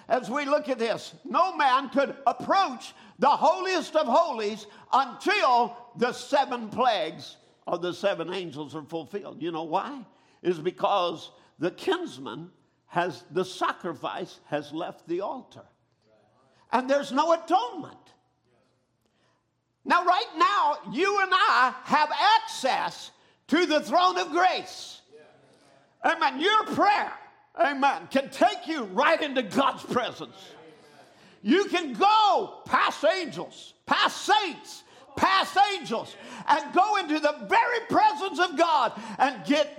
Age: 50-69